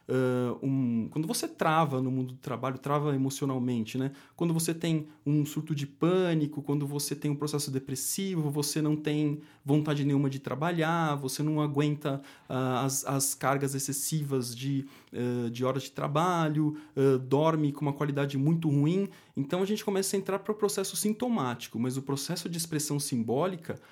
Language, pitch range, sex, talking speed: Portuguese, 135-170 Hz, male, 175 wpm